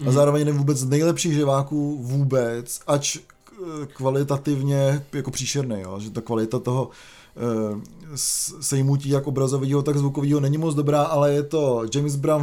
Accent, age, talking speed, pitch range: native, 20-39, 135 wpm, 130-150 Hz